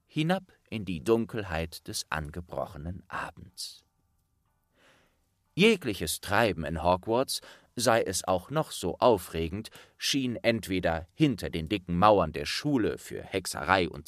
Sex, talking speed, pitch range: male, 120 wpm, 85-125 Hz